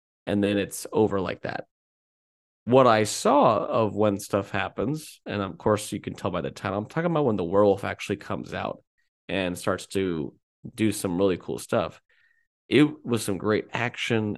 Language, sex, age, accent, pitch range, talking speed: English, male, 20-39, American, 95-120 Hz, 185 wpm